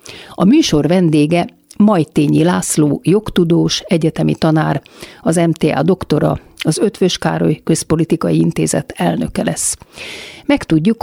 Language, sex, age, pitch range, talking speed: Hungarian, female, 50-69, 155-180 Hz, 110 wpm